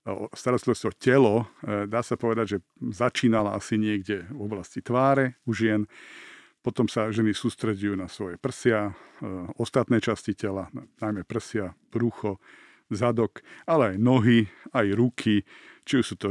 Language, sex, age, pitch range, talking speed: Slovak, male, 50-69, 105-125 Hz, 140 wpm